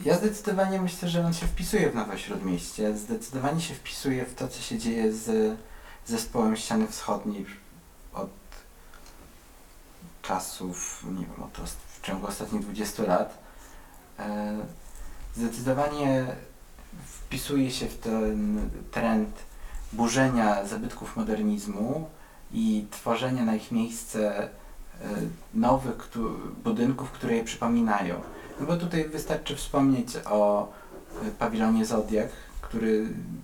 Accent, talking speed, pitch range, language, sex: native, 110 wpm, 105-175 Hz, Polish, male